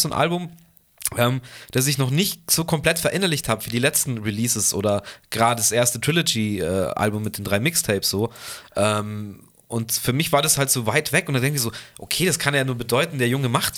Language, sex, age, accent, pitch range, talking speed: German, male, 30-49, German, 110-155 Hz, 220 wpm